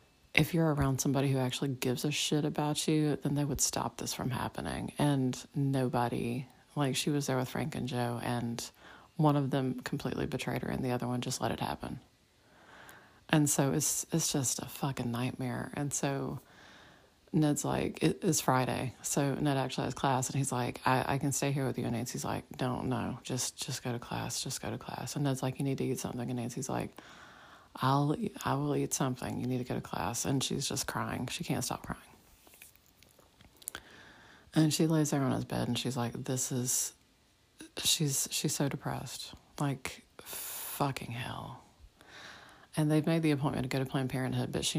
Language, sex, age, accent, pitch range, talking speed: English, female, 30-49, American, 125-145 Hz, 200 wpm